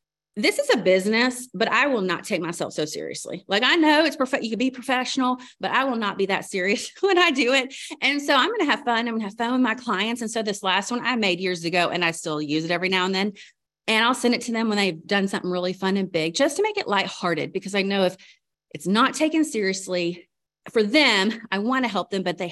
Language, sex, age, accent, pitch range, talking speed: English, female, 30-49, American, 190-265 Hz, 270 wpm